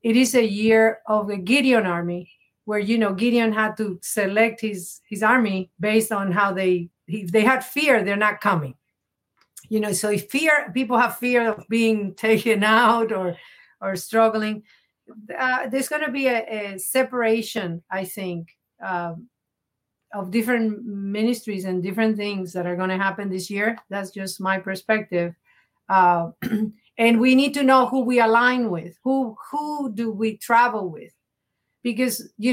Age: 40-59